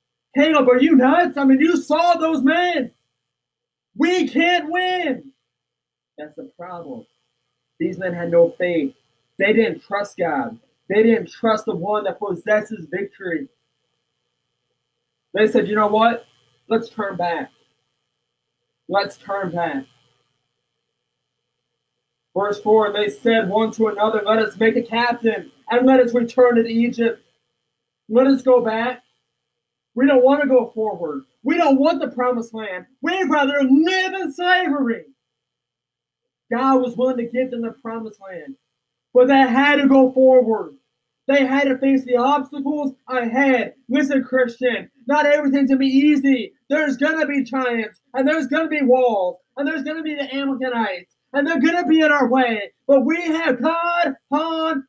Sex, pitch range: male, 190-275 Hz